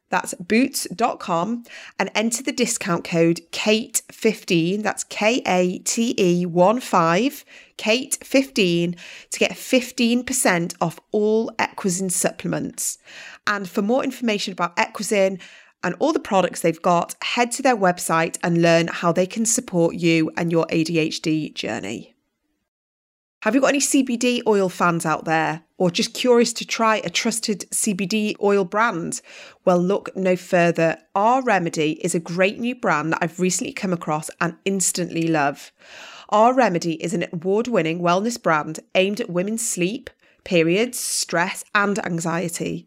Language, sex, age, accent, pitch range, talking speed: English, female, 30-49, British, 175-225 Hz, 135 wpm